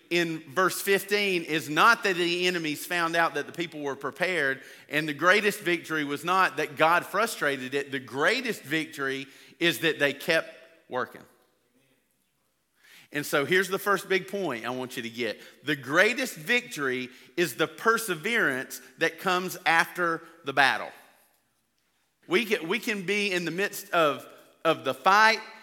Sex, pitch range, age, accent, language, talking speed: male, 150-195 Hz, 40-59, American, English, 150 wpm